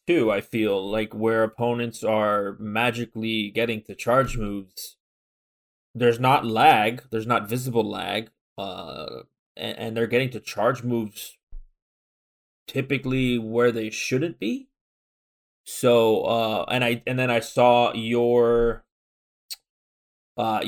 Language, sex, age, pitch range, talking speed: English, male, 20-39, 115-150 Hz, 120 wpm